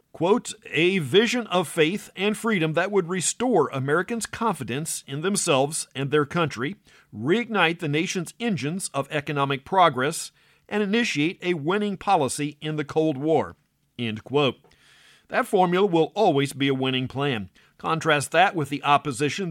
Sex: male